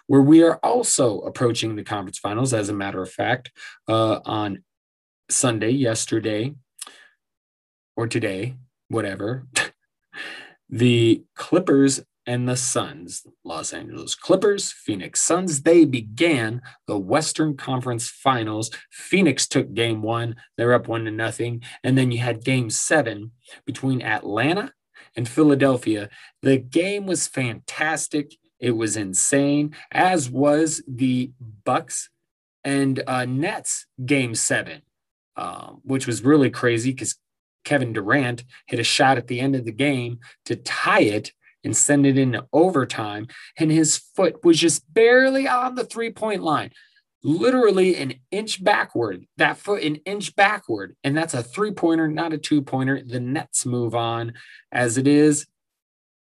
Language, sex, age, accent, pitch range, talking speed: English, male, 20-39, American, 115-155 Hz, 140 wpm